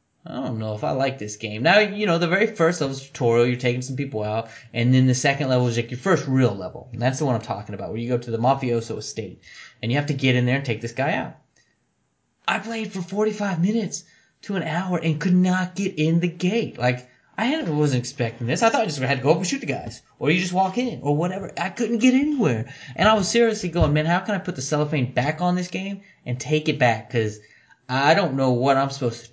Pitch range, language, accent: 125-175 Hz, English, American